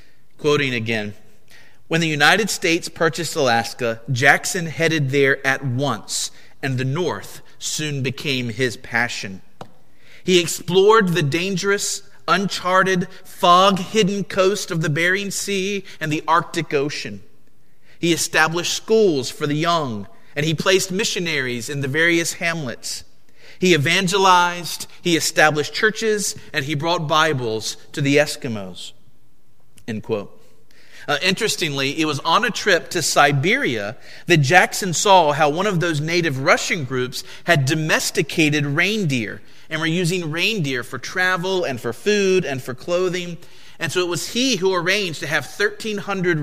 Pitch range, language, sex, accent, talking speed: 135-180 Hz, English, male, American, 135 wpm